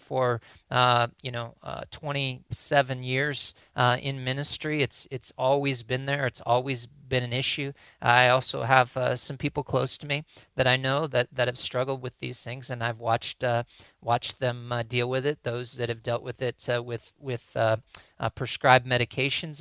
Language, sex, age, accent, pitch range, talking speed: English, male, 40-59, American, 120-140 Hz, 190 wpm